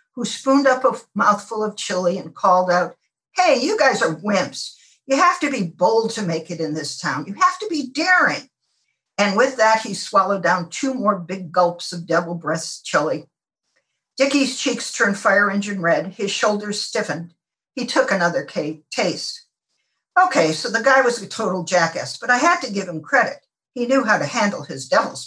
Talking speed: 190 wpm